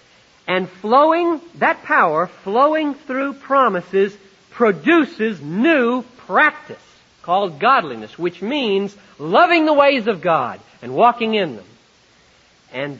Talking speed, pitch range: 110 wpm, 135-205 Hz